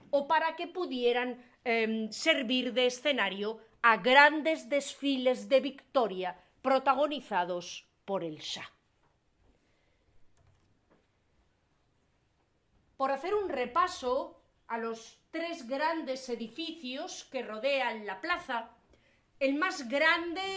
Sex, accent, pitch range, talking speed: female, Spanish, 220-300 Hz, 95 wpm